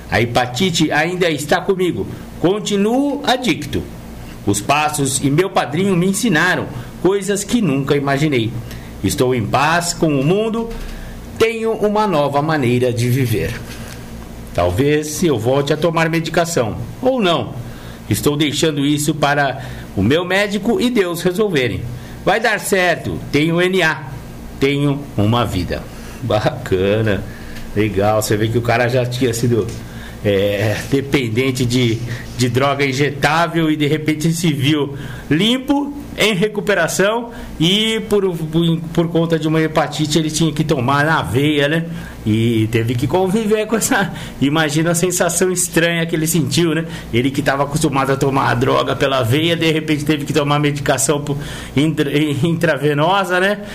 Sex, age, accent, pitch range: male, 60-79, Brazilian, 130-175 Hz